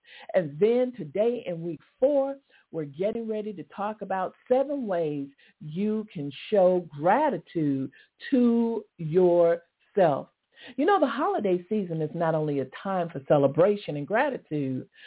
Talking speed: 135 wpm